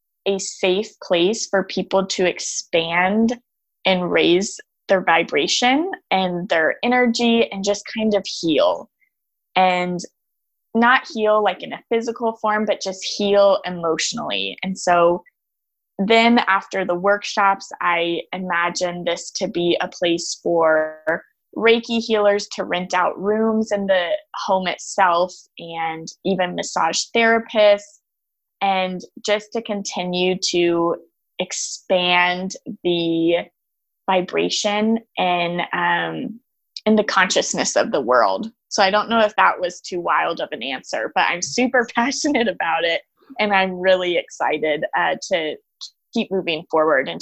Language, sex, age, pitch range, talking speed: English, female, 20-39, 175-220 Hz, 130 wpm